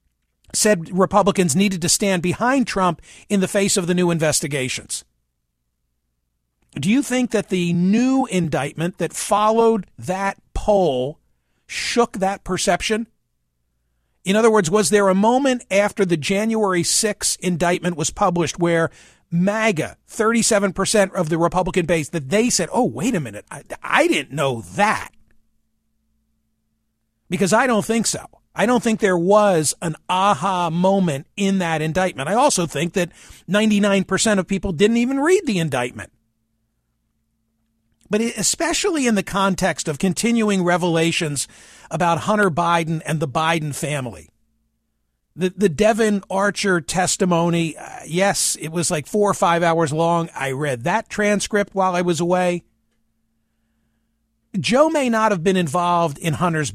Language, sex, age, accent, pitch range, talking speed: English, male, 50-69, American, 140-205 Hz, 145 wpm